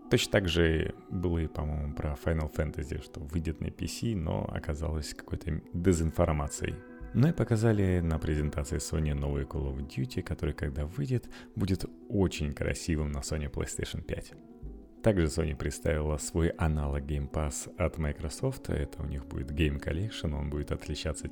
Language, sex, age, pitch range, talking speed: Russian, male, 30-49, 75-95 Hz, 155 wpm